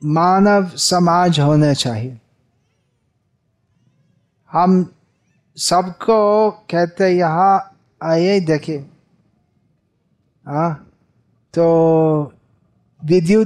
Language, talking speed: Hindi, 50 wpm